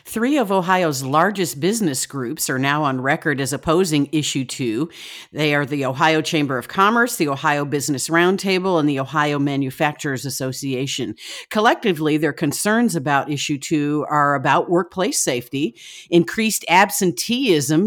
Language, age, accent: English, 50-69, American